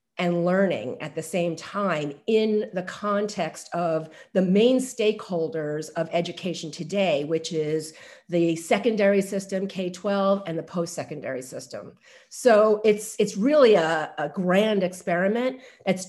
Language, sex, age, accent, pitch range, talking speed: English, female, 40-59, American, 170-210 Hz, 130 wpm